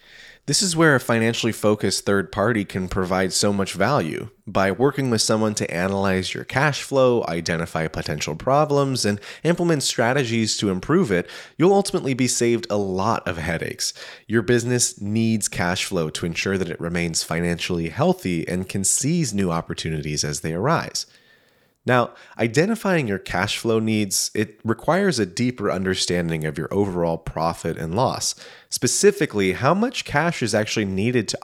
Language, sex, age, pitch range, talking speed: English, male, 30-49, 90-125 Hz, 160 wpm